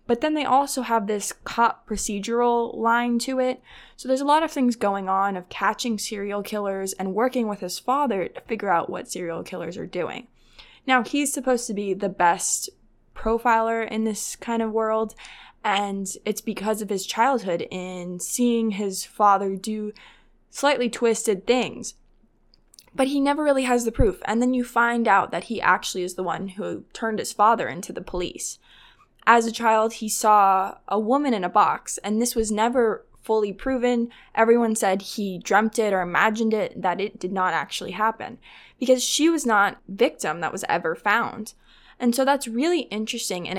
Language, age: English, 20-39